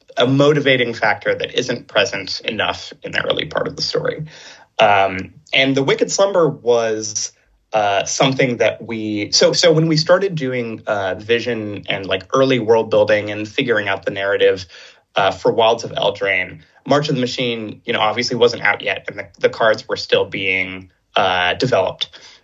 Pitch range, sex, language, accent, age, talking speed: 110-175 Hz, male, English, American, 20-39, 175 wpm